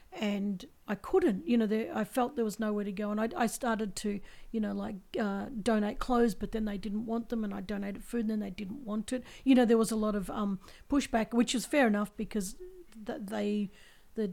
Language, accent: English, Australian